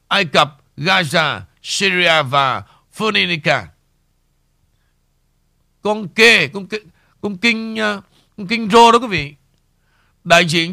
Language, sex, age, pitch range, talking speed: Vietnamese, male, 60-79, 165-230 Hz, 95 wpm